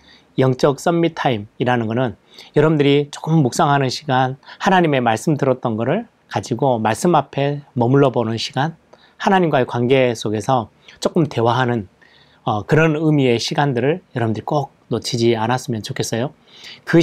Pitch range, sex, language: 115-150 Hz, male, Korean